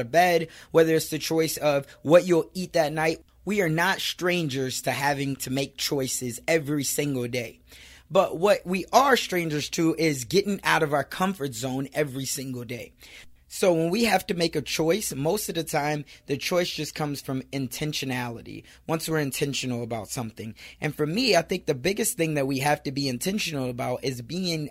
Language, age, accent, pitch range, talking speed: English, 20-39, American, 135-165 Hz, 195 wpm